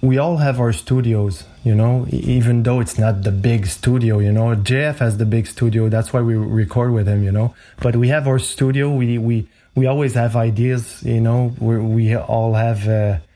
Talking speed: 210 wpm